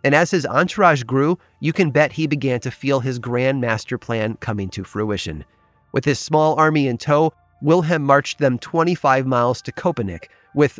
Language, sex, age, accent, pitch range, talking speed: English, male, 30-49, American, 115-155 Hz, 185 wpm